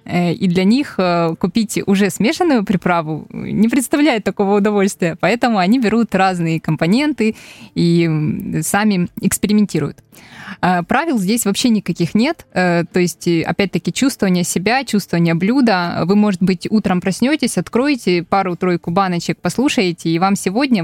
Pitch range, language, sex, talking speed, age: 175-220 Hz, Russian, female, 125 wpm, 20-39